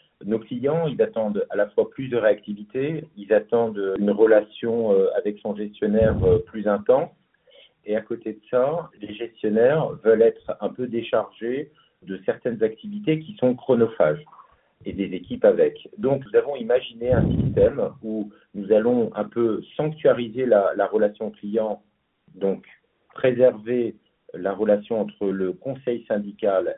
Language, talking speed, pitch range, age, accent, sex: French, 145 wpm, 105-170 Hz, 50-69, French, male